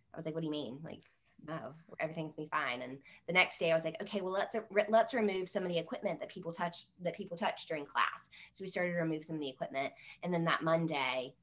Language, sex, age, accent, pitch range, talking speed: English, female, 20-39, American, 155-185 Hz, 270 wpm